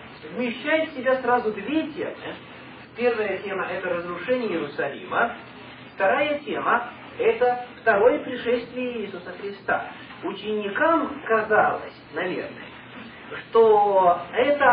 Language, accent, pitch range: Russian, native, 210-265 Hz